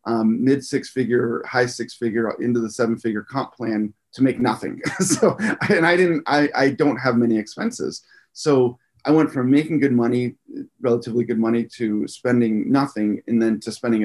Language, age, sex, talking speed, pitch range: English, 30-49, male, 180 wpm, 115-135 Hz